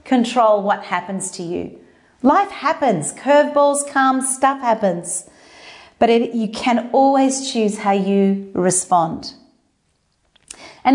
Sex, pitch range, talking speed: female, 195-265 Hz, 110 wpm